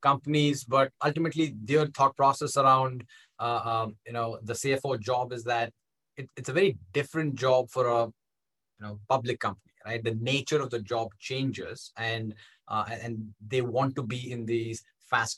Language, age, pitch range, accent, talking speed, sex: English, 20-39, 115-130 Hz, Indian, 175 wpm, male